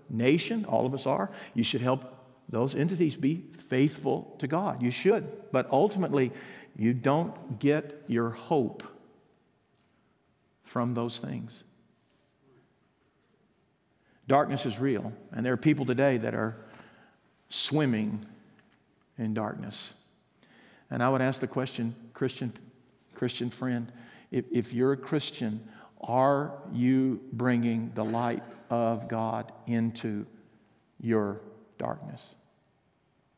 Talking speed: 115 wpm